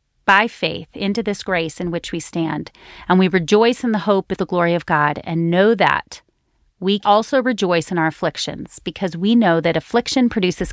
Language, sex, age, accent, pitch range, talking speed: English, female, 30-49, American, 165-205 Hz, 195 wpm